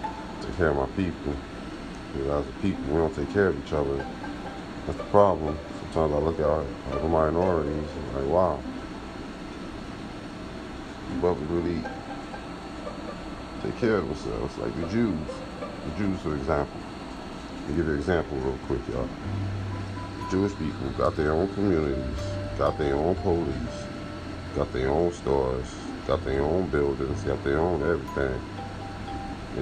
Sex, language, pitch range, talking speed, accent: male, English, 75-100 Hz, 150 wpm, American